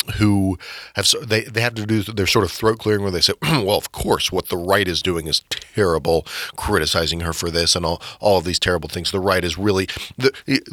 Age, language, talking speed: 30-49, English, 230 wpm